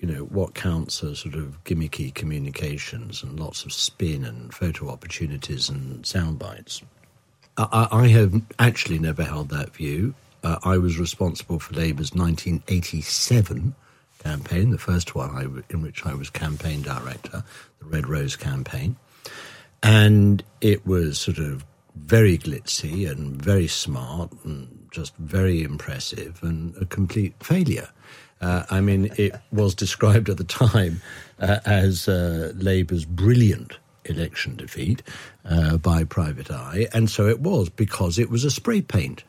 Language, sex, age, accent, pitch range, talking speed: English, male, 60-79, British, 80-115 Hz, 150 wpm